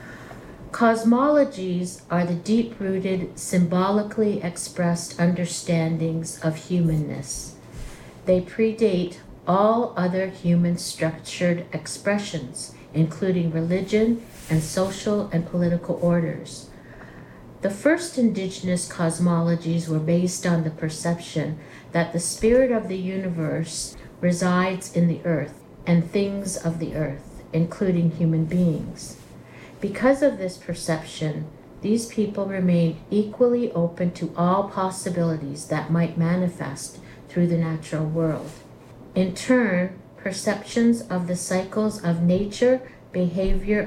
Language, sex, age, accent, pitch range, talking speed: English, female, 60-79, American, 165-190 Hz, 105 wpm